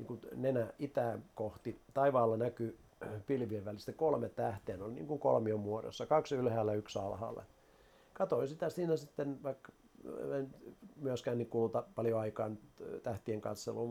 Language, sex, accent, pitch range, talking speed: Finnish, male, native, 110-140 Hz, 140 wpm